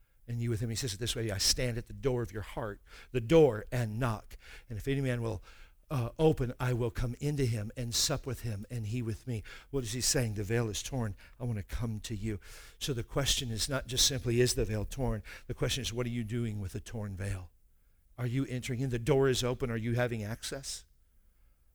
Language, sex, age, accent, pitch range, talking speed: English, male, 50-69, American, 105-135 Hz, 245 wpm